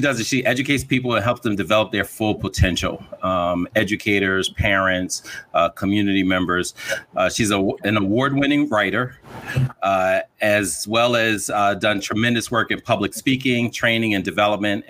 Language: English